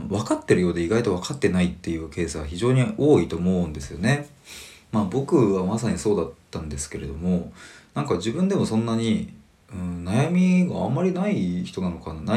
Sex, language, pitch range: male, Japanese, 80-110 Hz